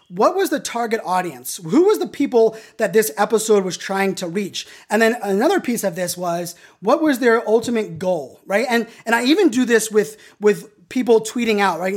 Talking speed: 205 wpm